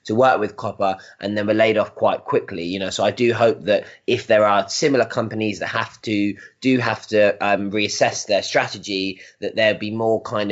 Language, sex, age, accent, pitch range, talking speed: English, male, 20-39, British, 105-120 Hz, 215 wpm